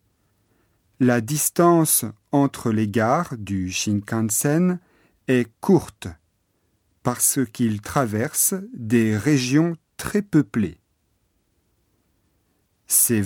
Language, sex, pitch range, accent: Japanese, male, 100-140 Hz, French